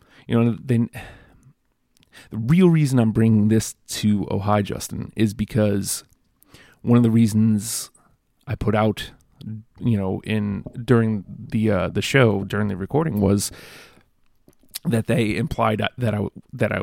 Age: 30-49